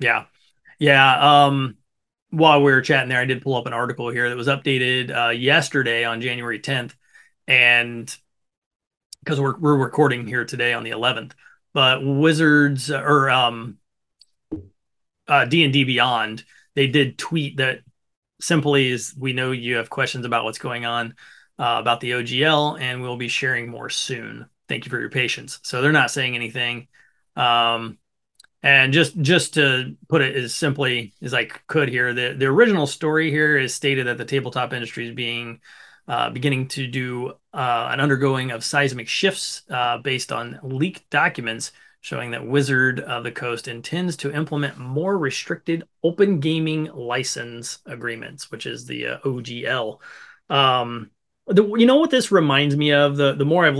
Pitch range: 120-150 Hz